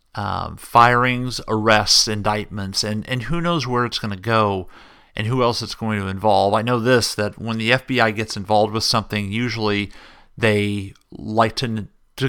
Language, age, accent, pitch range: English, 40-59, American, 105-130 Hz